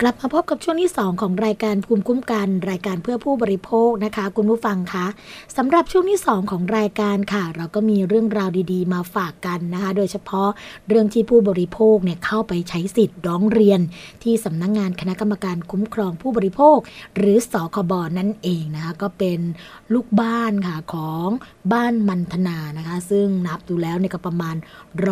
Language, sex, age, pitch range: Thai, female, 20-39, 180-220 Hz